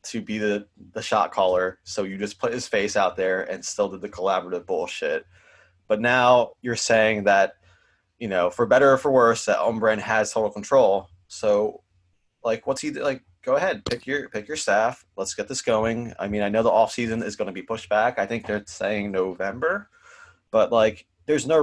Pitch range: 95-115 Hz